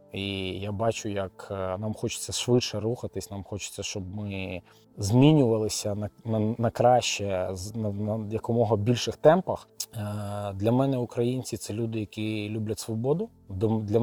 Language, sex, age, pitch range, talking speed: Ukrainian, male, 20-39, 105-115 Hz, 135 wpm